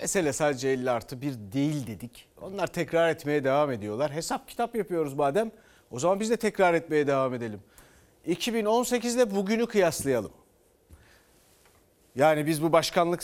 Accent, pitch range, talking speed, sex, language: native, 140-215 Hz, 140 wpm, male, Turkish